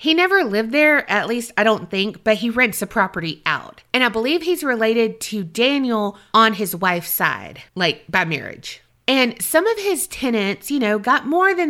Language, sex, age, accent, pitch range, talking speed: English, female, 30-49, American, 195-270 Hz, 200 wpm